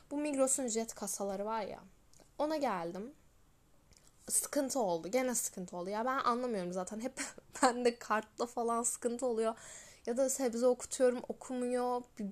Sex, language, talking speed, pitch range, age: female, Turkish, 135 wpm, 200-265 Hz, 10-29